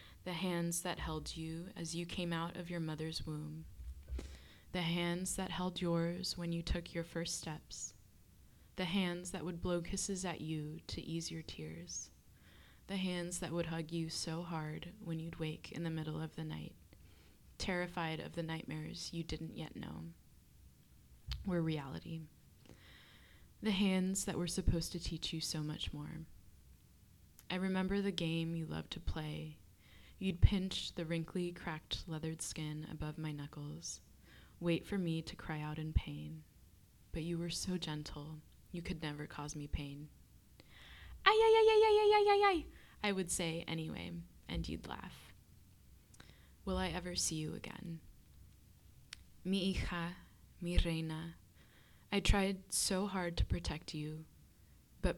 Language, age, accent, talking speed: English, 20-39, American, 155 wpm